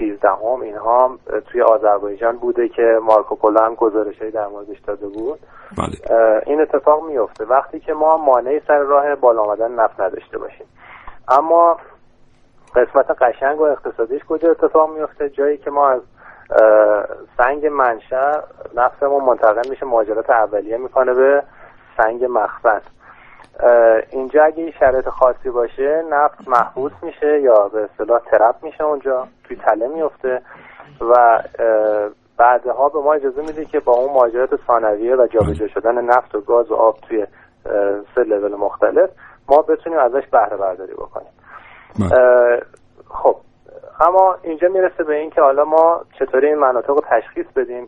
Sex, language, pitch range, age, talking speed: male, Persian, 115-155 Hz, 30-49, 140 wpm